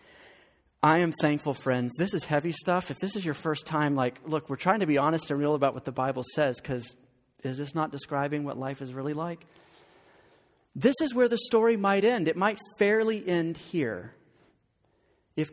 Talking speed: 195 wpm